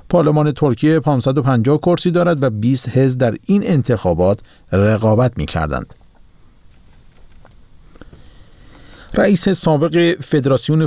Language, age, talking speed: Persian, 50-69, 95 wpm